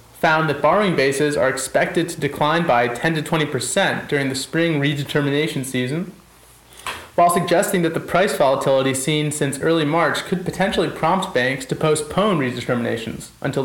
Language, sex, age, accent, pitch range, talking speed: English, male, 30-49, American, 135-165 Hz, 155 wpm